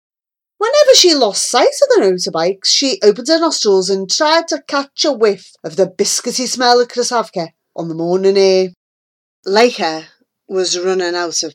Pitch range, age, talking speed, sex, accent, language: 190-295 Hz, 30-49, 165 wpm, female, British, English